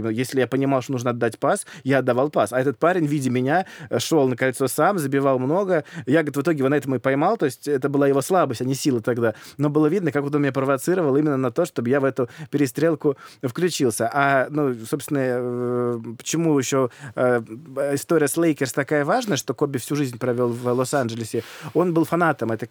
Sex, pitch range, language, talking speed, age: male, 130-150 Hz, Russian, 205 wpm, 20-39